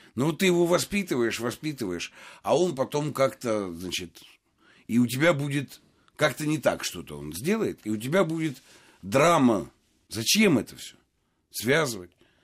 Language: Russian